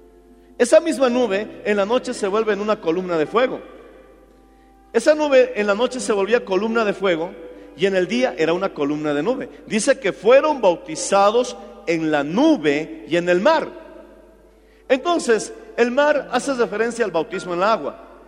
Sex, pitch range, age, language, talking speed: male, 195-260 Hz, 50-69, Spanish, 175 wpm